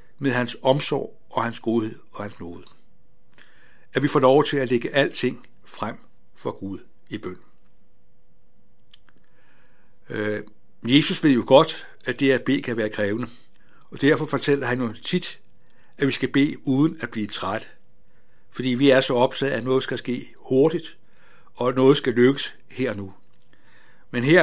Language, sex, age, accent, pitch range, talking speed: Danish, male, 60-79, native, 115-140 Hz, 165 wpm